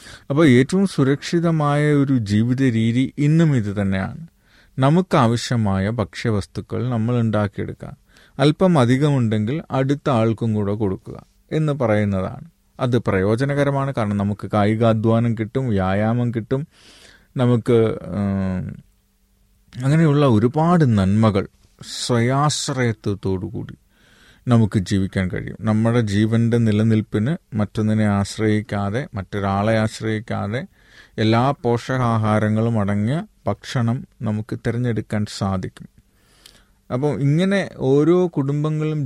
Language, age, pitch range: Malayalam, 30-49, 105-135 Hz